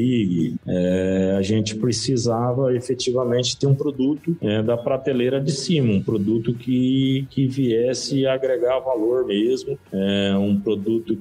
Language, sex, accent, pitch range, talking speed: Portuguese, male, Brazilian, 100-130 Hz, 110 wpm